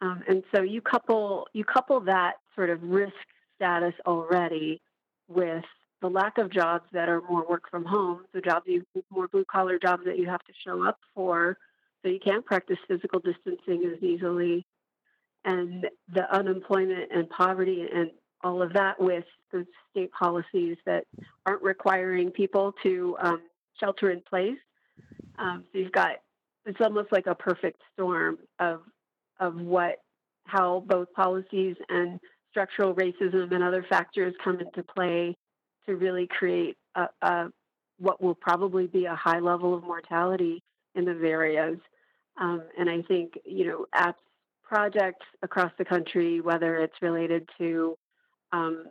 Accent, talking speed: American, 150 wpm